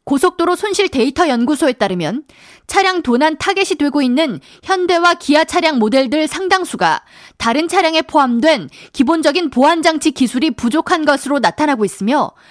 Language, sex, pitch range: Korean, female, 270-370 Hz